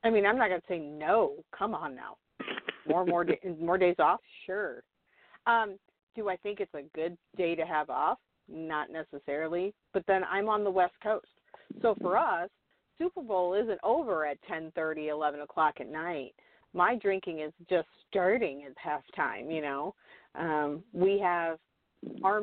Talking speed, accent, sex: 170 wpm, American, female